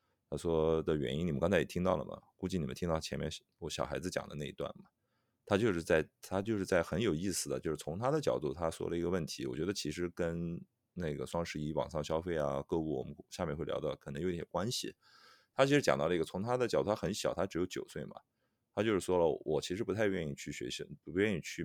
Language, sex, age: Chinese, male, 30-49